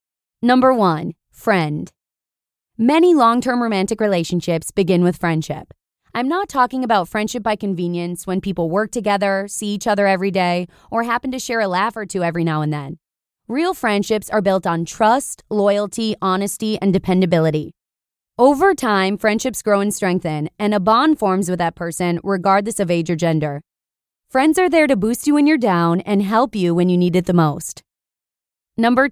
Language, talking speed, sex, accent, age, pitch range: English, 175 wpm, female, American, 20-39, 175-235 Hz